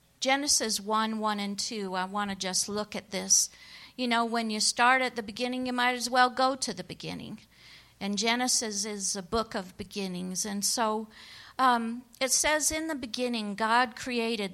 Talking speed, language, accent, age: 185 wpm, English, American, 50-69